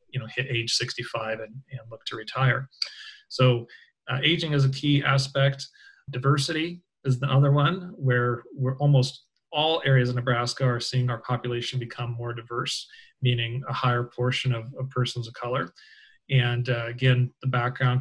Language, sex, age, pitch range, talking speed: English, male, 40-59, 120-135 Hz, 165 wpm